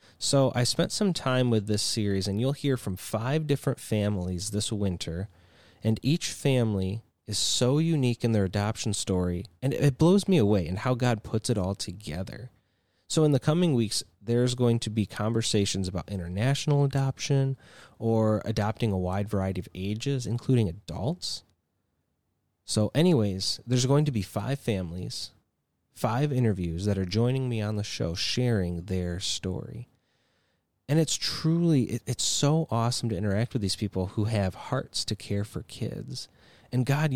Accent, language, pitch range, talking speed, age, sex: American, English, 95-130 Hz, 165 wpm, 30-49, male